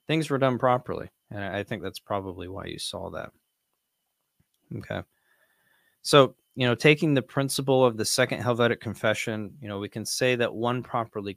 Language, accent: English, American